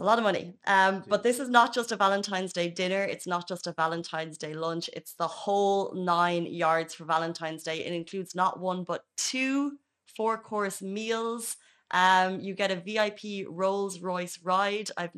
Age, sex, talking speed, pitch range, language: 20-39, female, 185 wpm, 175-205 Hz, Arabic